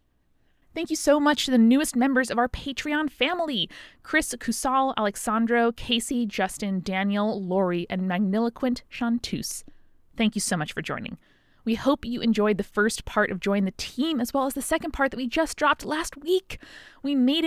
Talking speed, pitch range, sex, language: 180 wpm, 195-255 Hz, female, English